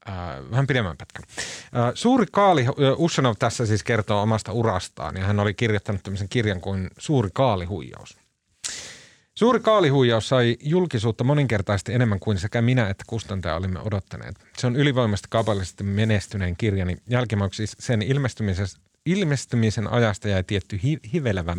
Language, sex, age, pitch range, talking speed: Finnish, male, 30-49, 100-130 Hz, 135 wpm